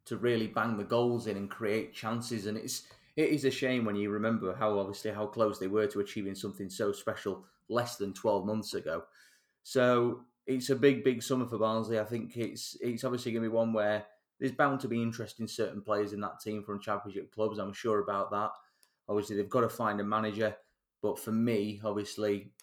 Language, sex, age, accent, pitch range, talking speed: English, male, 20-39, British, 100-110 Hz, 215 wpm